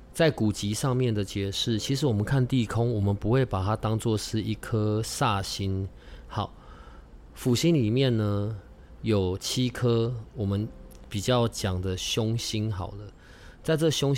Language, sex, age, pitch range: Chinese, male, 20-39, 100-125 Hz